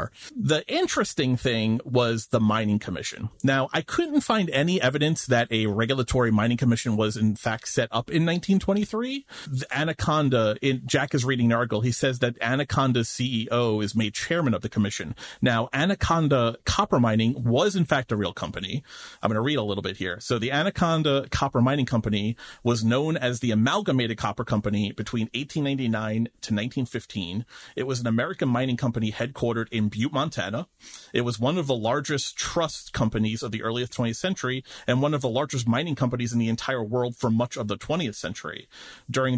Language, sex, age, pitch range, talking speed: English, male, 40-59, 115-135 Hz, 180 wpm